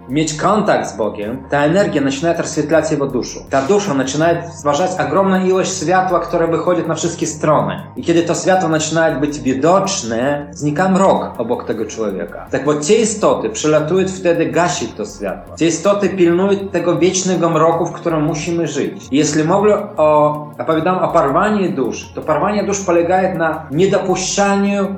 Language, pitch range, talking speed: Polish, 150-180 Hz, 160 wpm